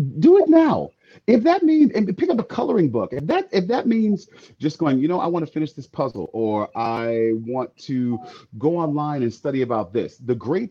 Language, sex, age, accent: English, male, 40-59, American